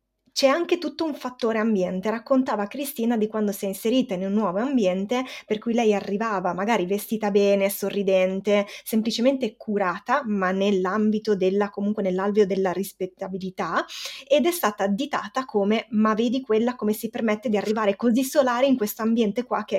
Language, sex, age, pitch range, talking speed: Italian, female, 20-39, 200-245 Hz, 165 wpm